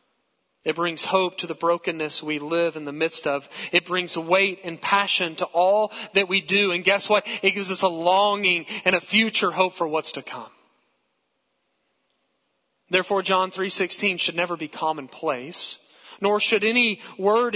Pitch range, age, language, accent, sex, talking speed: 175-225 Hz, 40-59, English, American, male, 165 wpm